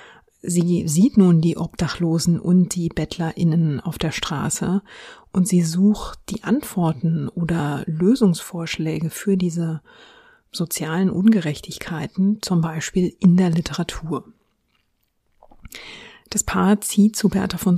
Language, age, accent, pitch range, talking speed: German, 30-49, German, 175-205 Hz, 110 wpm